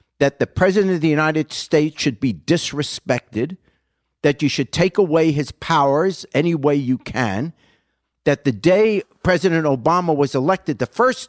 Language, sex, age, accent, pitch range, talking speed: English, male, 50-69, American, 125-180 Hz, 160 wpm